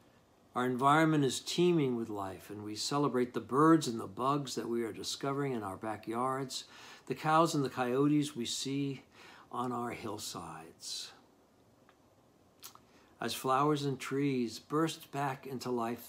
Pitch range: 105-135 Hz